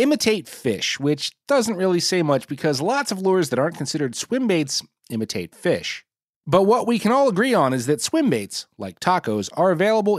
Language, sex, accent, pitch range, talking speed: English, male, American, 125-200 Hz, 195 wpm